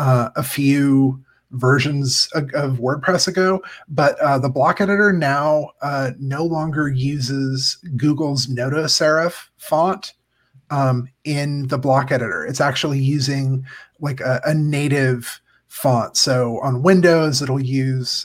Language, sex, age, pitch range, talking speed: English, male, 30-49, 130-155 Hz, 130 wpm